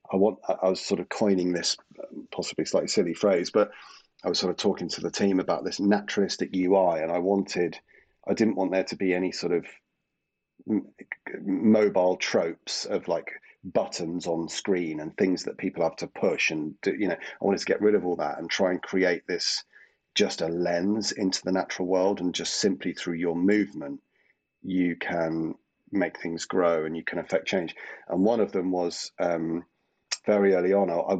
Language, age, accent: English, 30-49, British